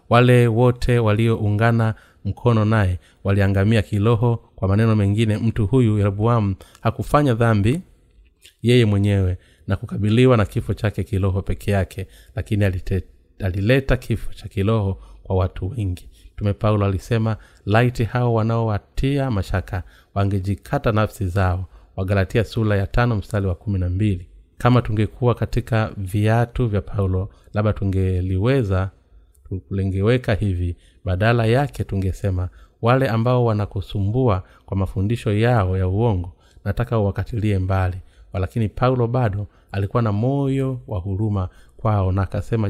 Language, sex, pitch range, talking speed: Swahili, male, 95-115 Hz, 120 wpm